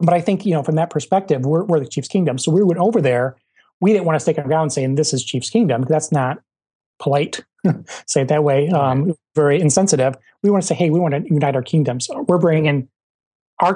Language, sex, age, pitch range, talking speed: English, male, 30-49, 135-160 Hz, 235 wpm